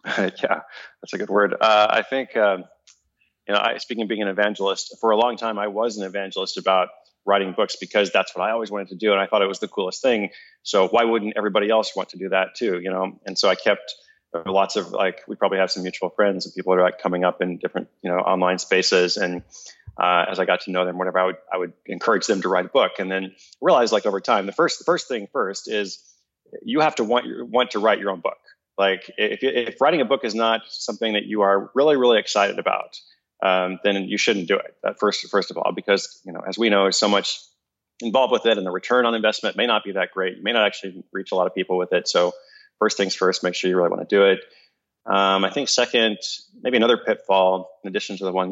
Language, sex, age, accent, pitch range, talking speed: English, male, 30-49, American, 95-110 Hz, 255 wpm